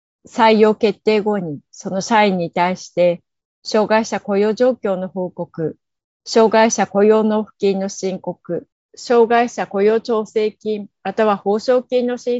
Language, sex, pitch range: Japanese, female, 180-230 Hz